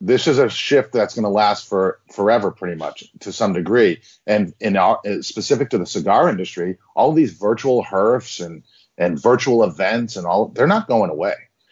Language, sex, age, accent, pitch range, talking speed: English, male, 40-59, American, 95-115 Hz, 185 wpm